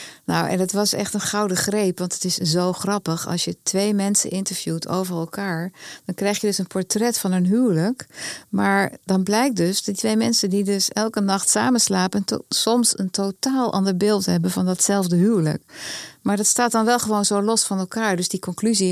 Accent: Dutch